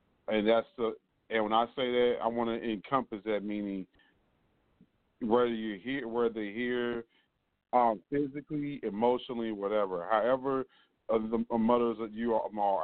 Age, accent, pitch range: 40-59, American, 105-120 Hz